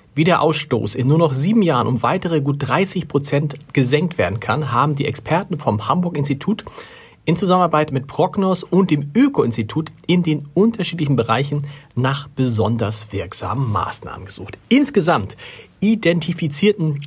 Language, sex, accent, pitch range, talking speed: German, male, German, 120-160 Hz, 140 wpm